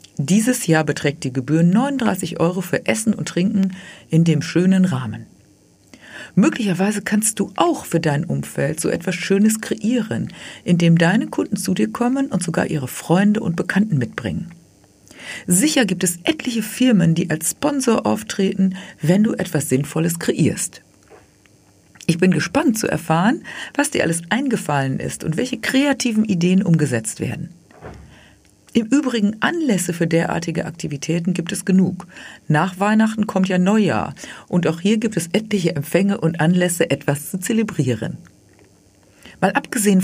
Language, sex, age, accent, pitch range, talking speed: German, female, 50-69, German, 155-215 Hz, 145 wpm